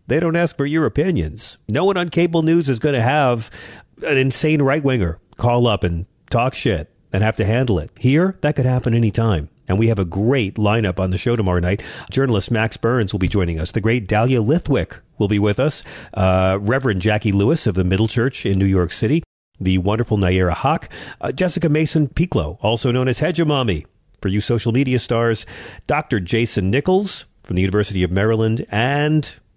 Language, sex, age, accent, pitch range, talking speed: English, male, 40-59, American, 95-130 Hz, 195 wpm